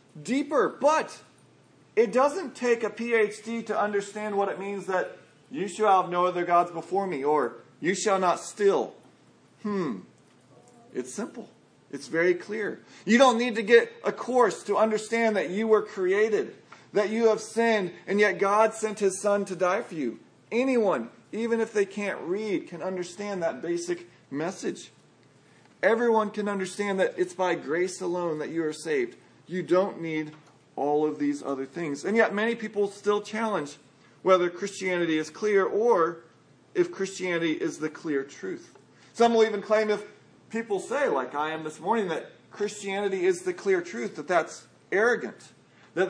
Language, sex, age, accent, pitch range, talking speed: English, male, 40-59, American, 170-225 Hz, 170 wpm